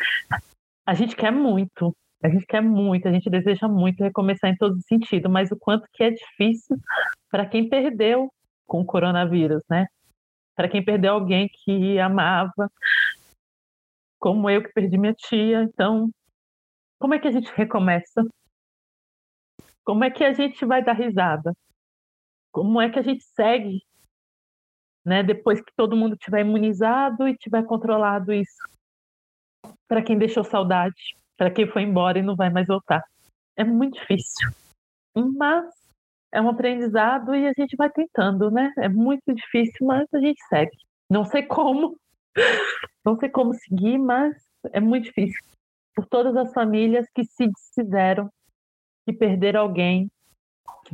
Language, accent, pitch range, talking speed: Portuguese, Brazilian, 190-240 Hz, 150 wpm